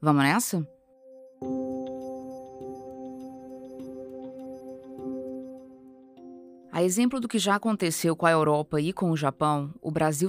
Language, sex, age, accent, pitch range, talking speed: Portuguese, female, 20-39, Brazilian, 145-200 Hz, 100 wpm